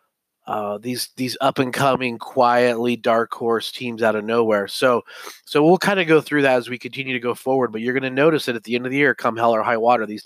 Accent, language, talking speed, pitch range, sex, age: American, English, 265 wpm, 115-135 Hz, male, 30-49